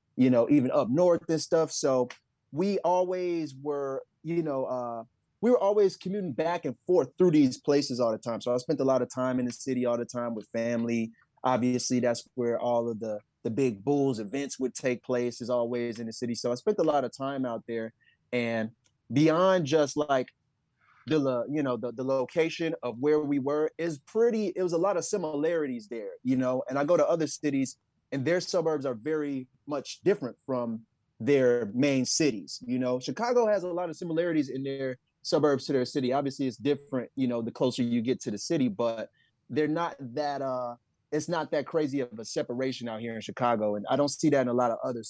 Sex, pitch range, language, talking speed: male, 120-155 Hz, English, 220 wpm